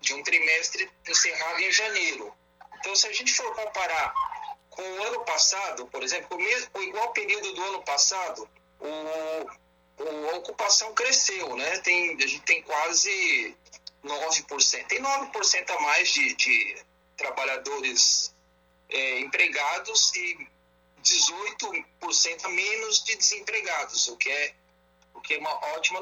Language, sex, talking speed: Portuguese, male, 135 wpm